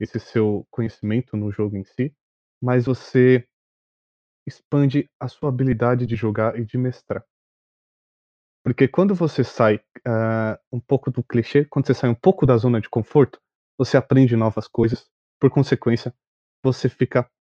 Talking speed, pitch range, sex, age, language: 150 wpm, 115-140 Hz, male, 20-39, Portuguese